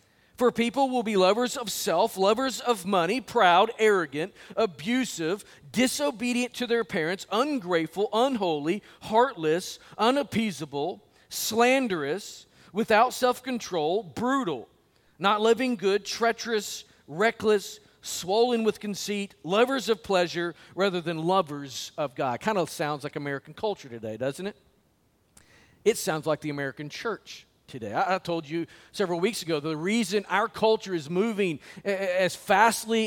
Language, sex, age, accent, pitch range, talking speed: English, male, 40-59, American, 175-230 Hz, 130 wpm